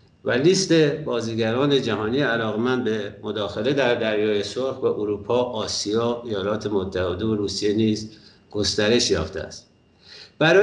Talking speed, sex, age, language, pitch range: 125 wpm, male, 50-69, Persian, 120-155 Hz